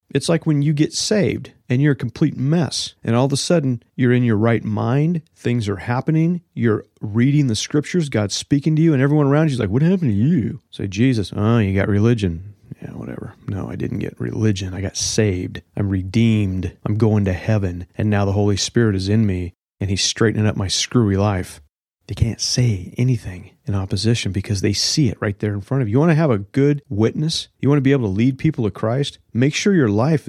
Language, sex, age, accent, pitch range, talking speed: English, male, 30-49, American, 105-135 Hz, 230 wpm